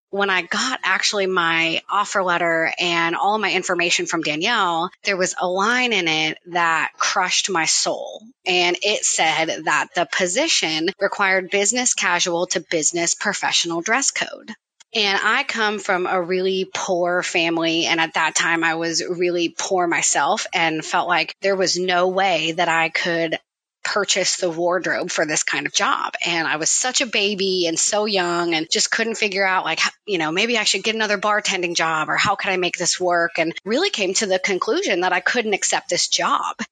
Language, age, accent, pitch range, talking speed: English, 30-49, American, 175-200 Hz, 190 wpm